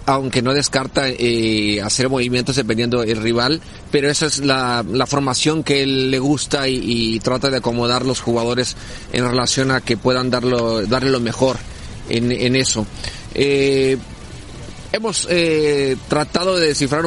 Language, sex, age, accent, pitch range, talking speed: Spanish, male, 30-49, Mexican, 125-150 Hz, 155 wpm